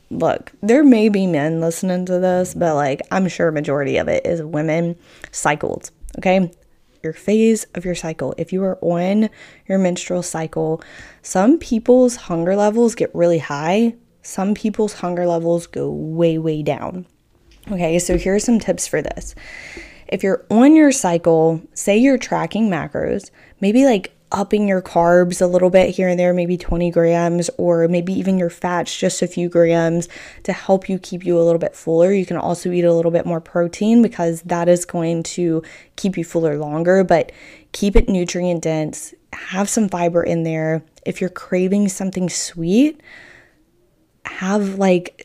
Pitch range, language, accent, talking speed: 165-195 Hz, English, American, 170 wpm